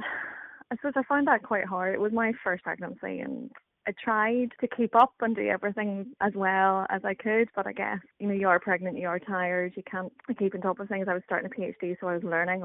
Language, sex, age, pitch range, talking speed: English, female, 20-39, 185-230 Hz, 250 wpm